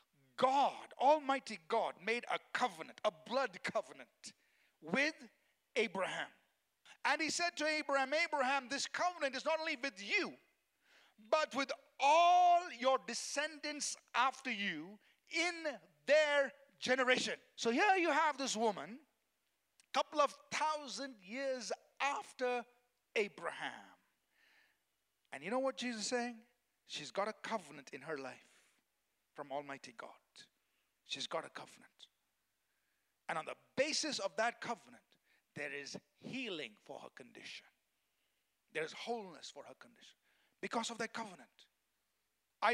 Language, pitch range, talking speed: English, 195-280 Hz, 130 wpm